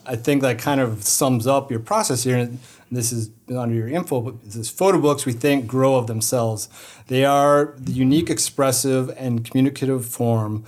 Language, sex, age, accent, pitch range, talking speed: English, male, 30-49, American, 115-135 Hz, 185 wpm